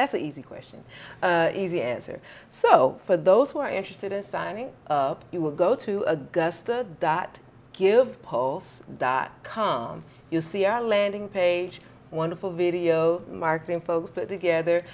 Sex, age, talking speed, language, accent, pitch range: female, 40-59, 130 wpm, English, American, 155-190 Hz